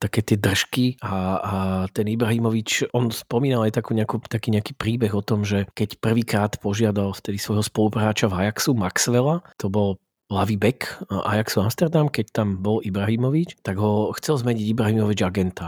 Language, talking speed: Slovak, 165 wpm